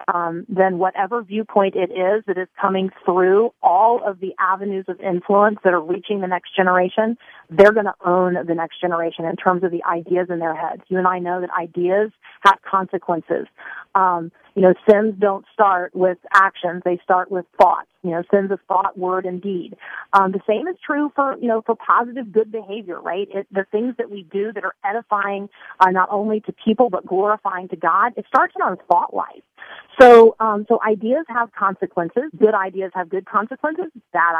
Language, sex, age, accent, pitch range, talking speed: English, female, 30-49, American, 185-215 Hz, 195 wpm